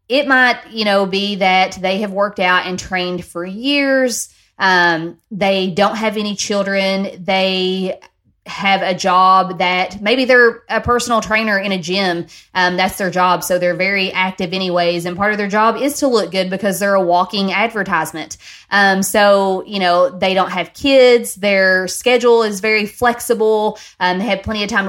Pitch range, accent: 185-225 Hz, American